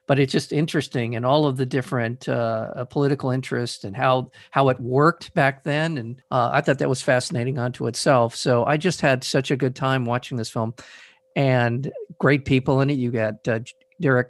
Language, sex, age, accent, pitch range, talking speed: English, male, 50-69, American, 120-145 Hz, 200 wpm